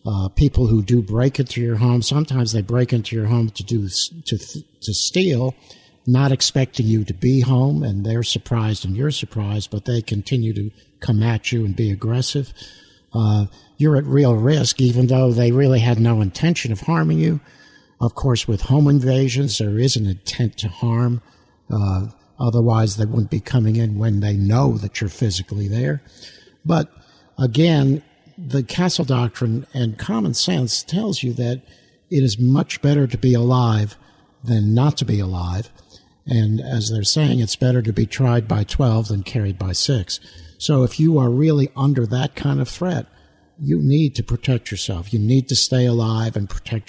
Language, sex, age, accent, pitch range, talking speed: English, male, 60-79, American, 110-135 Hz, 180 wpm